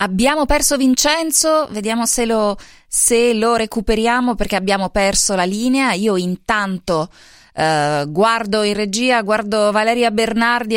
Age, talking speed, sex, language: 20-39, 125 wpm, female, Italian